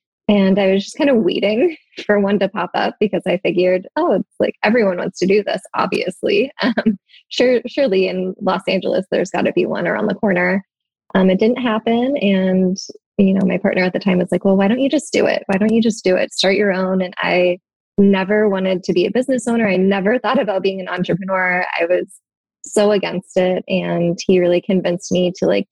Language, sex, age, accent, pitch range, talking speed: English, female, 20-39, American, 180-205 Hz, 225 wpm